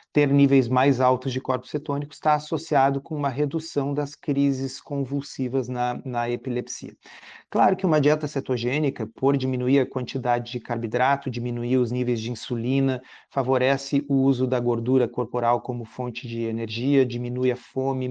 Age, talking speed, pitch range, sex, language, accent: 40-59, 155 wpm, 125-145 Hz, male, Portuguese, Brazilian